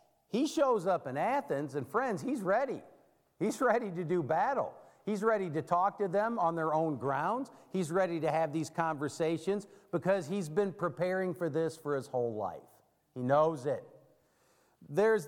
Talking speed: 175 wpm